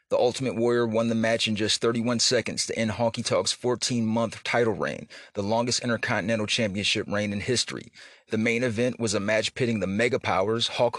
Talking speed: 190 wpm